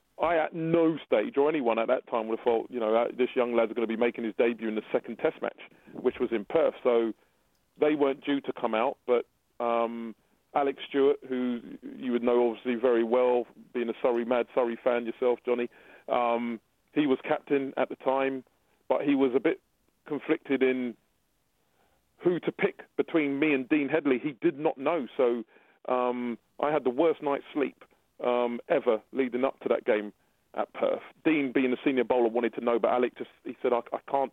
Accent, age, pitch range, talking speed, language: British, 30-49, 120-140 Hz, 205 wpm, English